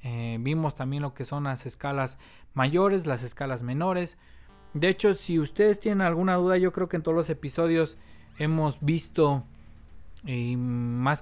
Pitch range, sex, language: 125-155 Hz, male, Spanish